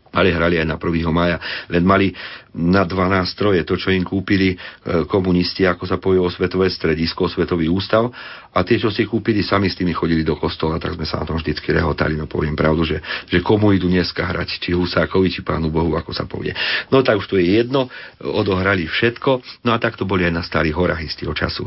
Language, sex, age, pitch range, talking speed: Slovak, male, 40-59, 85-105 Hz, 215 wpm